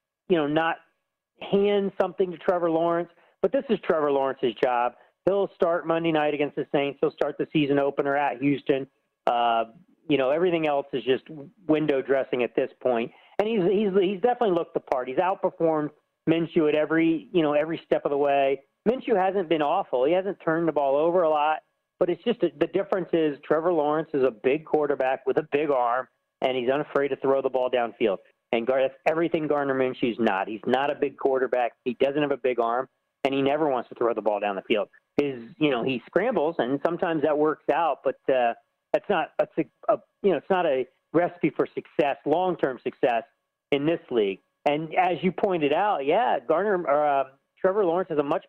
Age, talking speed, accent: 40-59, 205 wpm, American